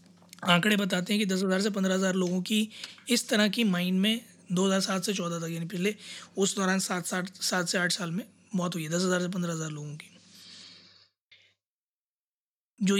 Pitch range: 185-215 Hz